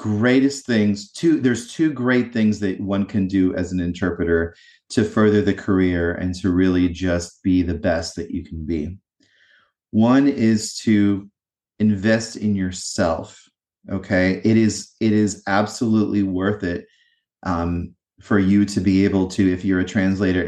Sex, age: male, 30-49